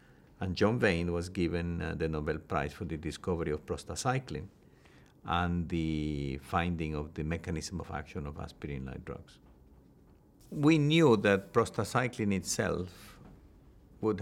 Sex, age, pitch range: male, 50-69, 85-105 Hz